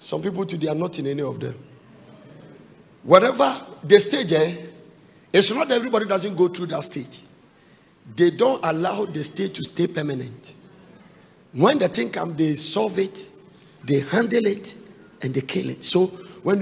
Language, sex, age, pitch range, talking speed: English, male, 50-69, 150-195 Hz, 165 wpm